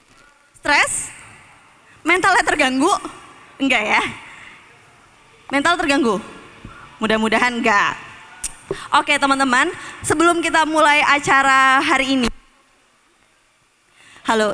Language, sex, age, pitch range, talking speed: Indonesian, female, 20-39, 255-315 Hz, 75 wpm